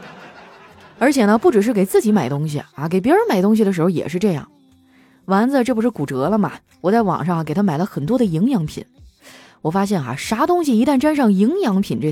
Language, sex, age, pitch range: Chinese, female, 20-39, 170-235 Hz